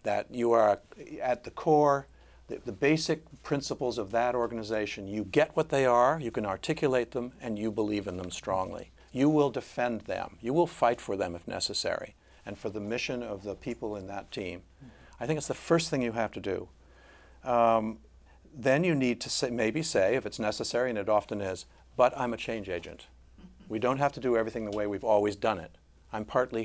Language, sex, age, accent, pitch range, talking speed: English, male, 50-69, American, 100-140 Hz, 205 wpm